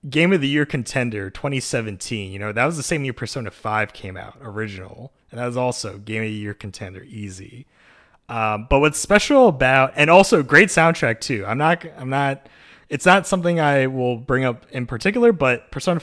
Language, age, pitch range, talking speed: English, 20-39, 110-140 Hz, 200 wpm